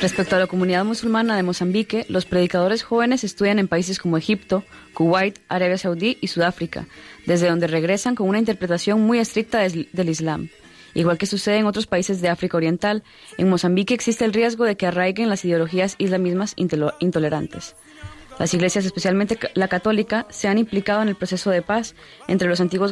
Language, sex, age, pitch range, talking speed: Spanish, female, 20-39, 175-210 Hz, 175 wpm